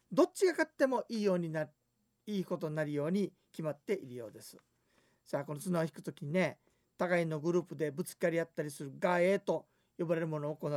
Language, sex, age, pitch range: Japanese, male, 40-59, 155-220 Hz